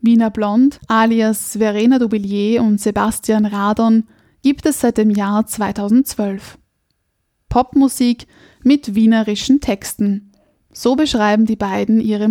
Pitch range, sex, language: 215-240 Hz, female, German